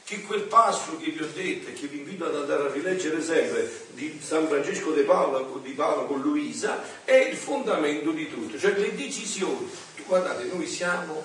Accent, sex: native, male